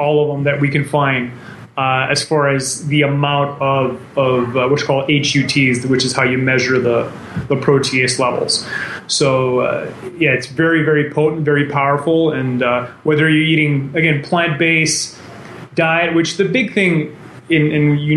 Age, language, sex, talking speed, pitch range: 30-49, English, male, 175 wpm, 130-155 Hz